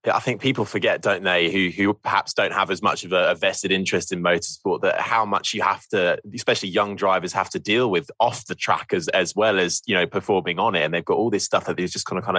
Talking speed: 270 wpm